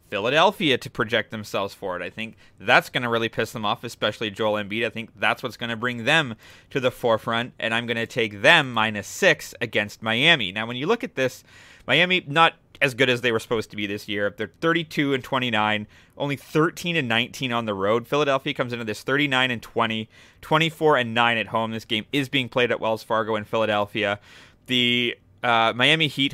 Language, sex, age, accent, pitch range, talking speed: English, male, 30-49, American, 110-130 Hz, 210 wpm